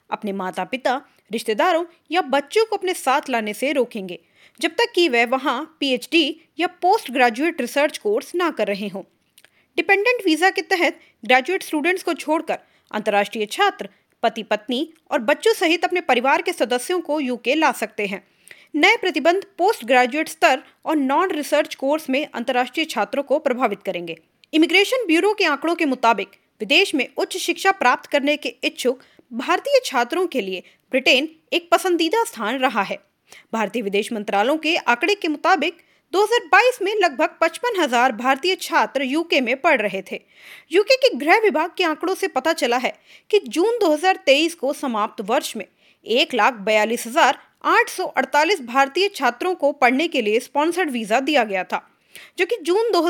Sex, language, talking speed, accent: female, English, 100 wpm, Indian